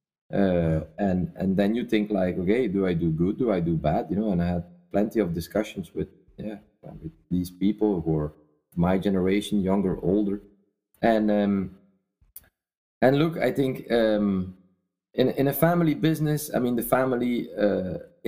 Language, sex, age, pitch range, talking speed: English, male, 30-49, 90-120 Hz, 170 wpm